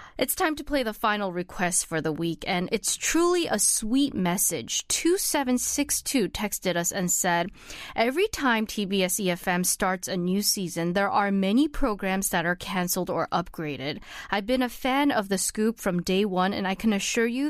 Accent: American